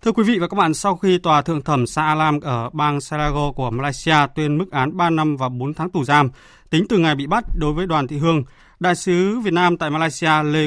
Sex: male